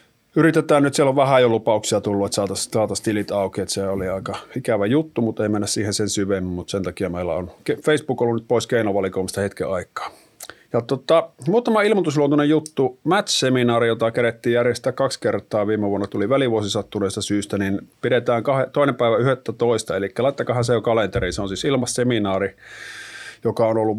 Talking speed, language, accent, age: 180 wpm, Finnish, native, 30-49